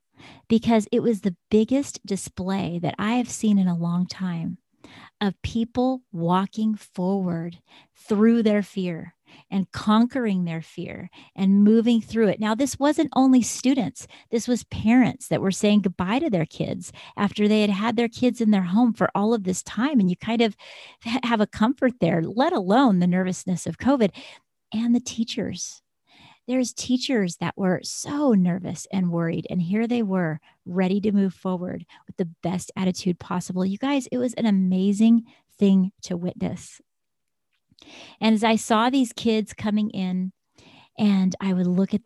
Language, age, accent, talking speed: English, 40-59, American, 170 wpm